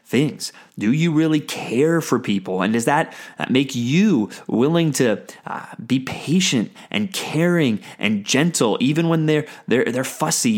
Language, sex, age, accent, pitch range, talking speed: English, male, 30-49, American, 125-170 Hz, 155 wpm